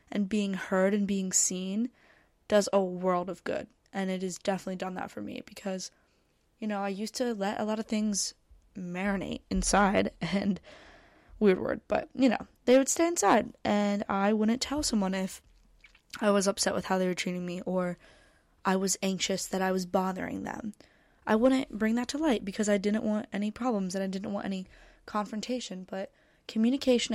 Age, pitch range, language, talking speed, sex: 20-39, 190-220 Hz, English, 190 wpm, female